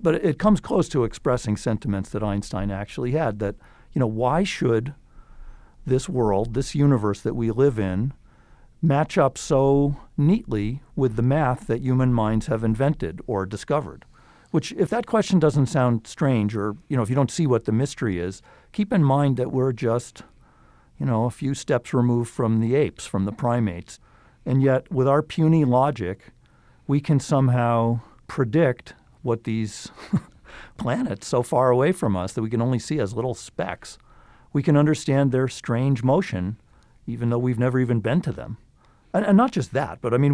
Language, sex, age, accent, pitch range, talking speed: English, male, 50-69, American, 110-140 Hz, 180 wpm